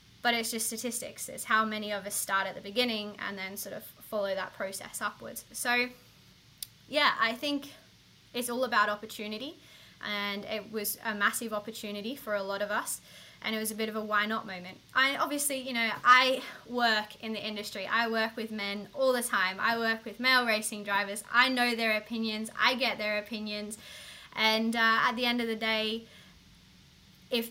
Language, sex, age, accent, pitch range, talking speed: English, female, 20-39, Australian, 210-245 Hz, 195 wpm